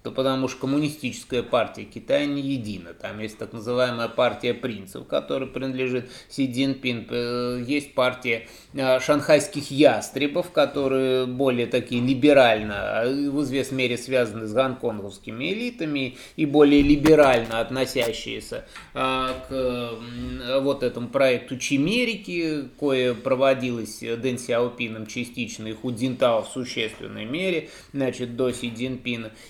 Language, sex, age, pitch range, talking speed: Russian, male, 20-39, 120-145 Hz, 115 wpm